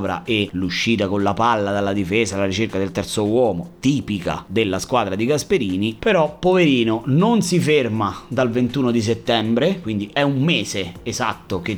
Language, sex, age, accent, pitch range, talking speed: Italian, male, 30-49, native, 95-130 Hz, 165 wpm